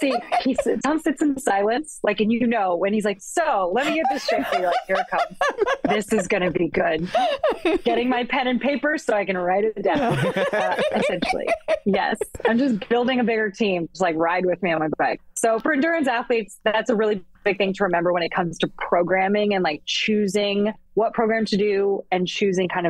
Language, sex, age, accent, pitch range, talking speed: English, female, 30-49, American, 170-220 Hz, 225 wpm